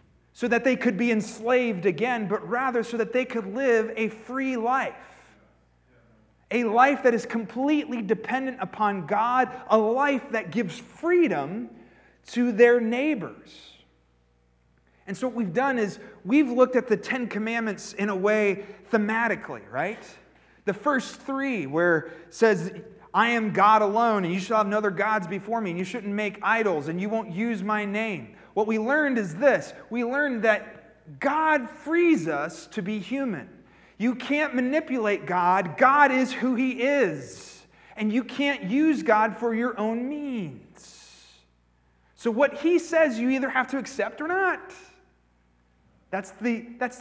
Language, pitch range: English, 205-255 Hz